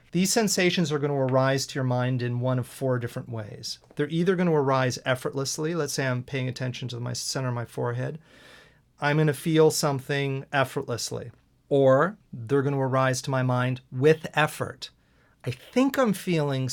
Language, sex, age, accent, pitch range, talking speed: English, male, 40-59, American, 130-155 Hz, 185 wpm